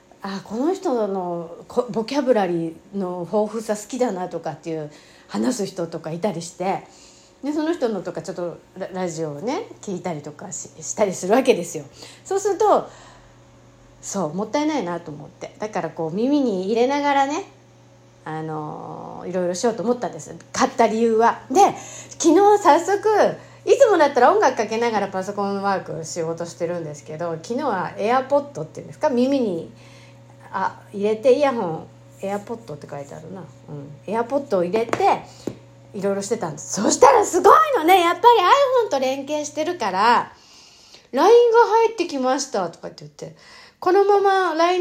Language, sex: Japanese, female